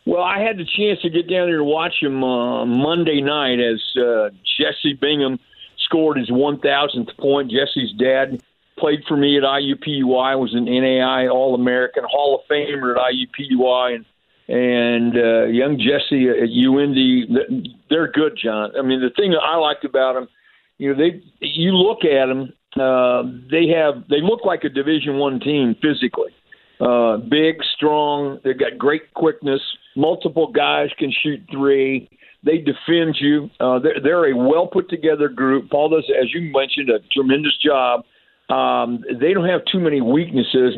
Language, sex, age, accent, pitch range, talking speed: English, male, 50-69, American, 130-155 Hz, 165 wpm